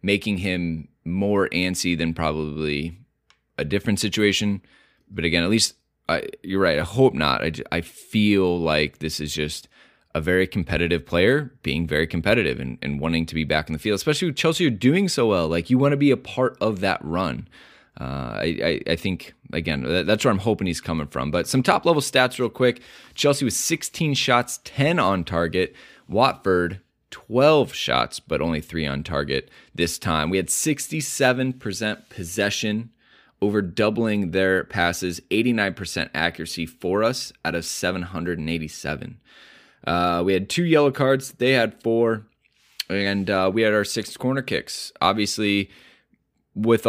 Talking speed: 165 wpm